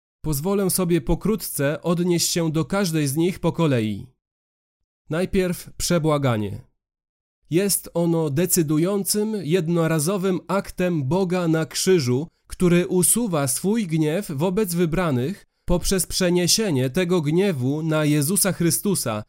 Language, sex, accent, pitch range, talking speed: Polish, male, native, 145-185 Hz, 105 wpm